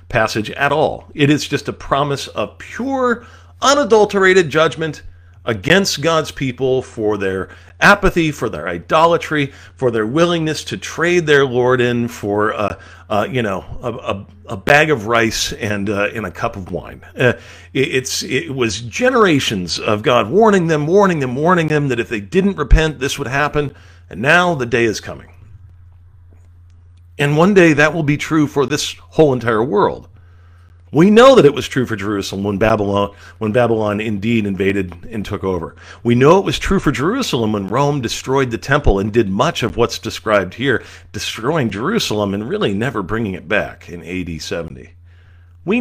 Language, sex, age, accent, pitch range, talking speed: English, male, 40-59, American, 95-150 Hz, 175 wpm